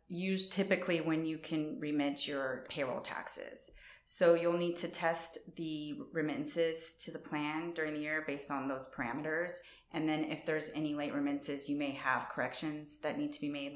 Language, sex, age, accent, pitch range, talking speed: English, female, 30-49, American, 140-160 Hz, 185 wpm